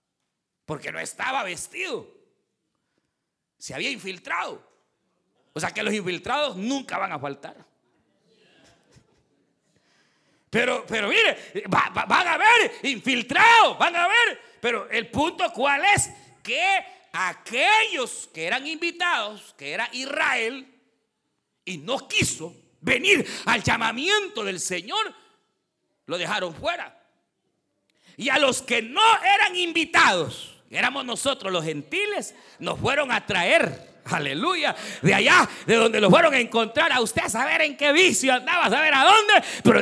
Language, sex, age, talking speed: Spanish, male, 50-69, 130 wpm